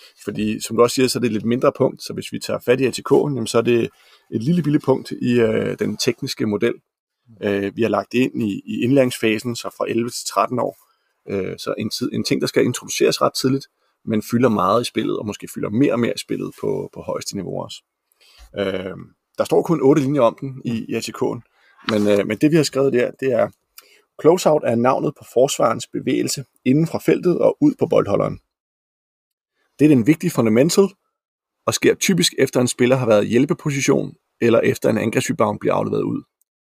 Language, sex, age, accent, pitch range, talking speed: Danish, male, 30-49, native, 115-145 Hz, 215 wpm